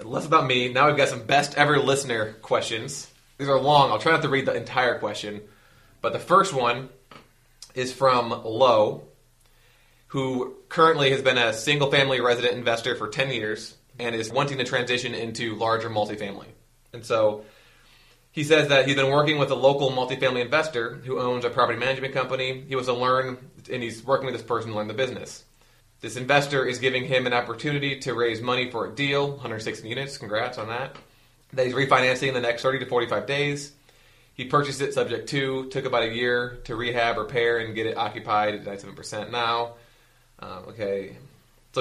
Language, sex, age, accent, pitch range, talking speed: English, male, 20-39, American, 115-140 Hz, 190 wpm